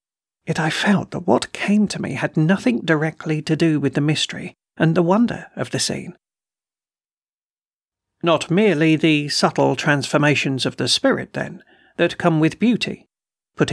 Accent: British